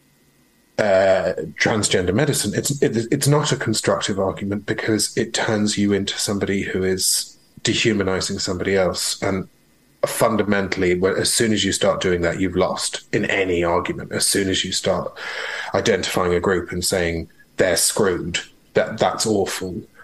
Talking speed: 150 wpm